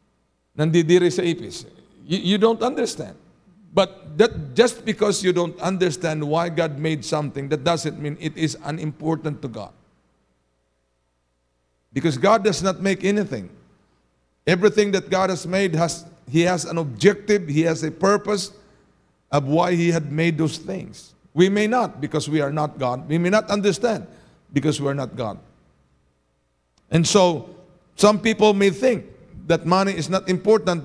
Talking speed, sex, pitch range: 155 wpm, male, 140-185 Hz